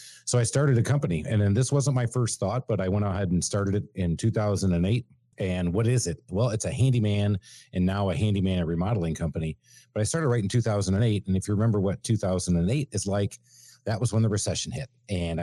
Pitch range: 90-115 Hz